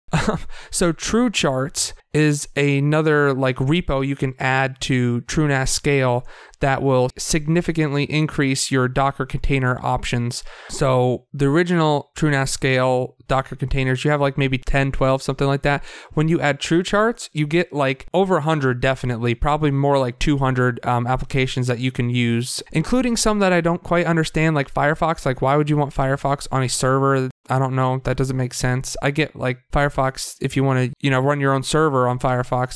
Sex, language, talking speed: male, English, 185 wpm